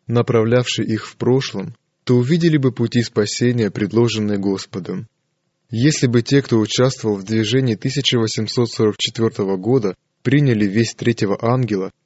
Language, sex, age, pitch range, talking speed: Russian, male, 20-39, 105-130 Hz, 120 wpm